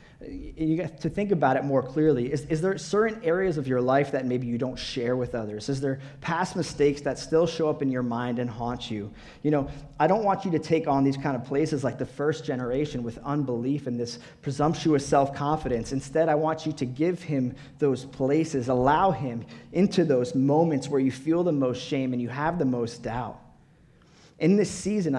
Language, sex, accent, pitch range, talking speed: English, male, American, 125-165 Hz, 210 wpm